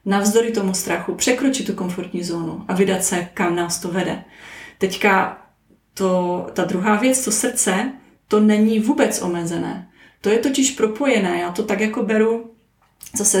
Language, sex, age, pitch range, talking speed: Czech, female, 30-49, 195-230 Hz, 155 wpm